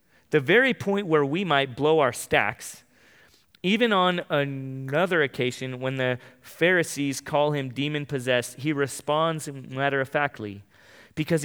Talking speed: 120 wpm